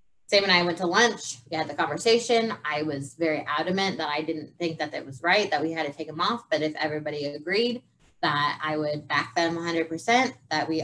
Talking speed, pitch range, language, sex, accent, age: 225 wpm, 155-195 Hz, English, female, American, 20-39